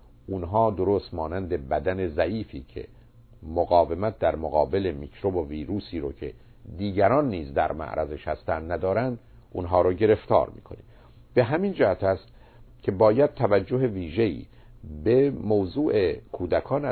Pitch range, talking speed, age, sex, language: 85-115 Hz, 125 wpm, 50-69, male, Persian